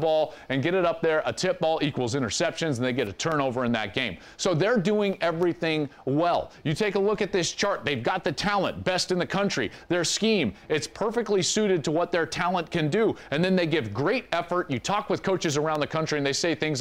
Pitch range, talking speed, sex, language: 130-175 Hz, 240 wpm, male, English